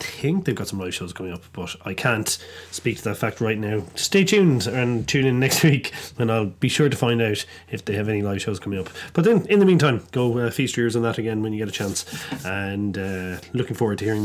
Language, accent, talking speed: English, Irish, 260 wpm